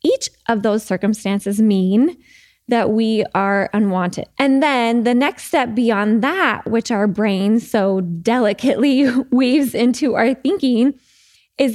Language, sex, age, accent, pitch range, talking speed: English, female, 20-39, American, 205-275 Hz, 135 wpm